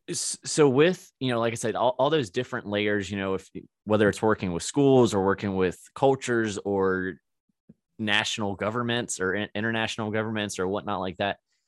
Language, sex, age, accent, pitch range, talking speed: English, male, 20-39, American, 90-110 Hz, 175 wpm